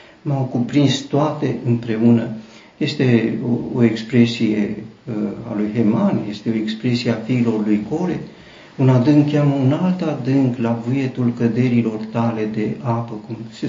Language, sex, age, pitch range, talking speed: Romanian, male, 50-69, 110-120 Hz, 145 wpm